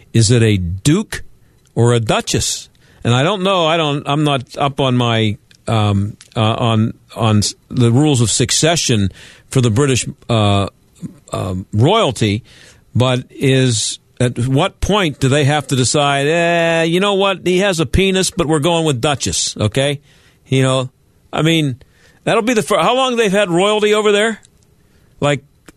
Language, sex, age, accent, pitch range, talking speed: English, male, 50-69, American, 120-160 Hz, 170 wpm